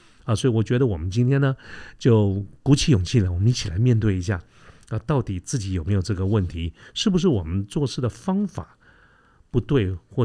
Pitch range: 100-130 Hz